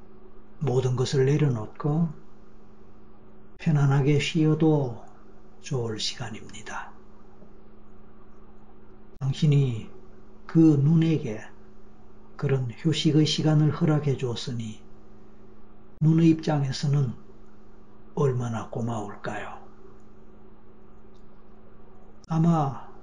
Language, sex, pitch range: Korean, male, 130-160 Hz